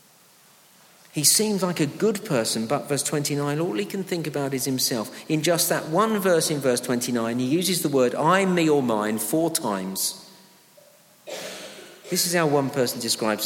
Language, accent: English, British